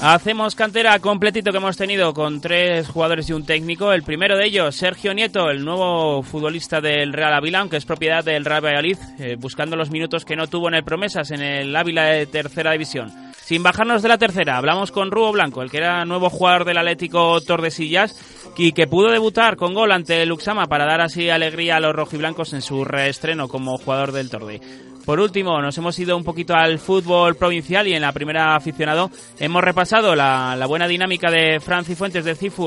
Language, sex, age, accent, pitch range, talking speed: Spanish, male, 30-49, Spanish, 150-180 Hz, 205 wpm